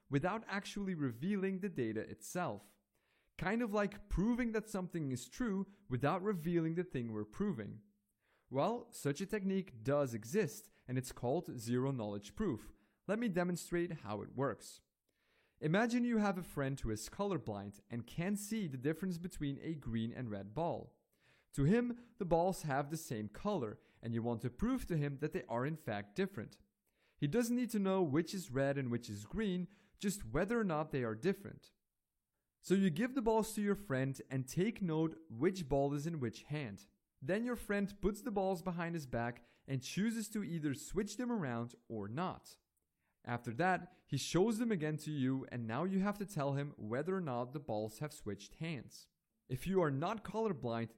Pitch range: 125-195 Hz